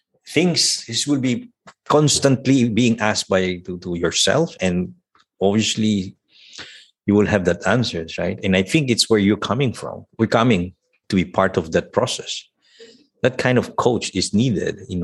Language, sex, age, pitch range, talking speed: English, male, 50-69, 95-120 Hz, 170 wpm